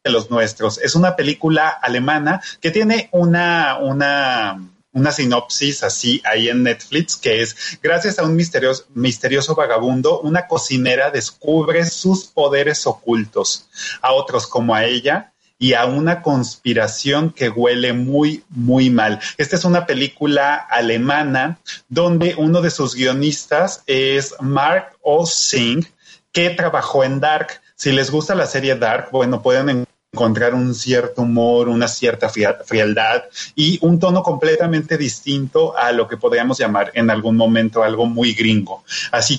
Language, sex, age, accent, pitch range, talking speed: Spanish, male, 30-49, Mexican, 120-165 Hz, 145 wpm